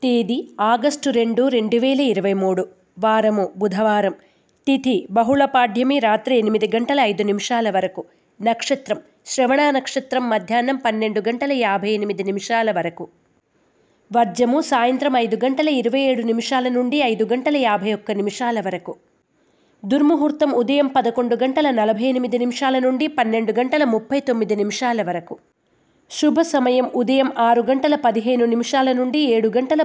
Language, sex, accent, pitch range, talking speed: Telugu, female, native, 220-265 Hz, 125 wpm